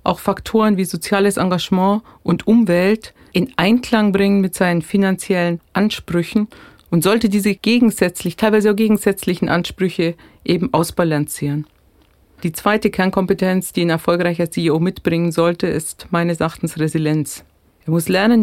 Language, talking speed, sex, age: German, 130 wpm, female, 40-59